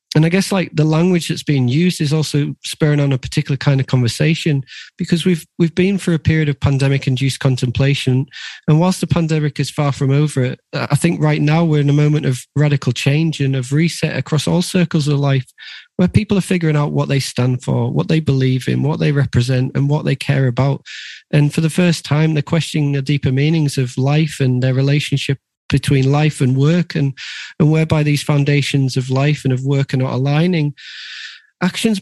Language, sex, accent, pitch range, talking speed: English, male, British, 130-155 Hz, 205 wpm